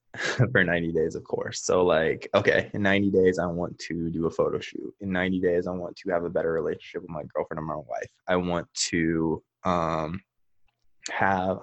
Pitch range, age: 90-115 Hz, 20-39